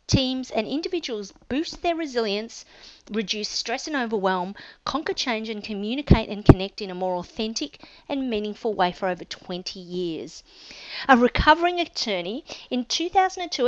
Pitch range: 205-265 Hz